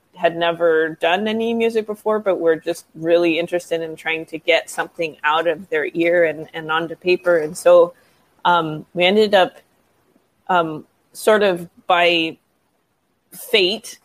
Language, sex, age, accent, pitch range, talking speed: English, female, 20-39, American, 165-190 Hz, 150 wpm